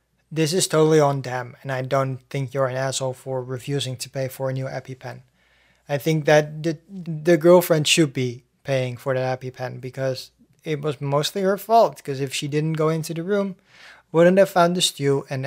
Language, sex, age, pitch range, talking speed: English, male, 20-39, 135-175 Hz, 200 wpm